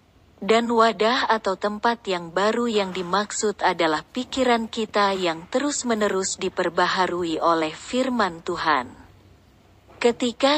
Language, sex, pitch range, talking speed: Indonesian, female, 180-230 Hz, 100 wpm